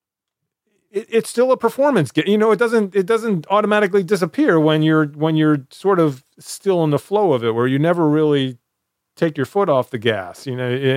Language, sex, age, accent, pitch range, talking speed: English, male, 30-49, American, 120-155 Hz, 200 wpm